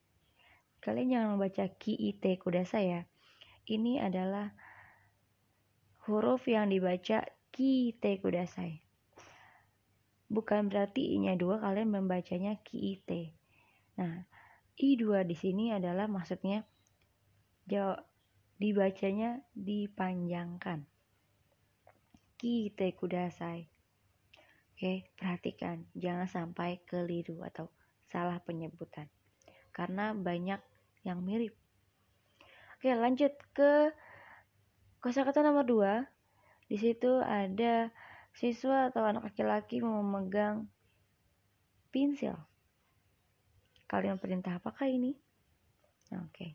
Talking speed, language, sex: 90 wpm, Indonesian, female